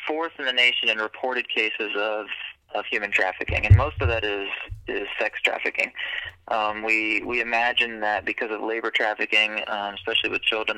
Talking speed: 180 wpm